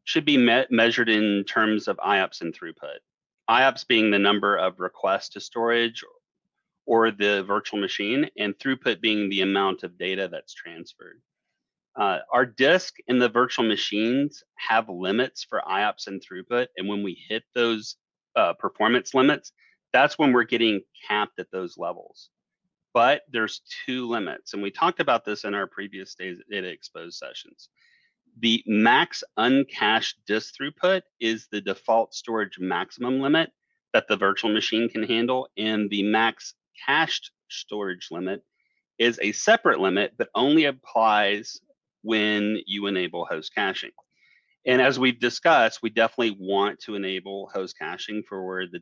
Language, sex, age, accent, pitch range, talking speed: English, male, 30-49, American, 100-120 Hz, 145 wpm